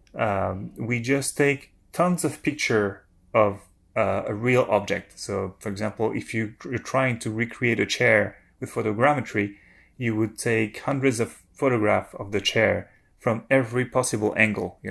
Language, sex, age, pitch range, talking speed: English, male, 30-49, 105-130 Hz, 155 wpm